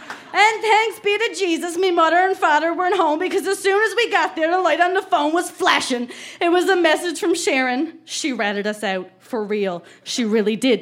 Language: English